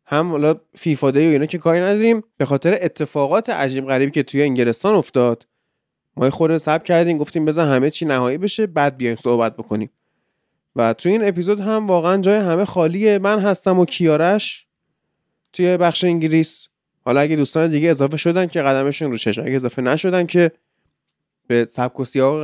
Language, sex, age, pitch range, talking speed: Persian, male, 20-39, 125-185 Hz, 170 wpm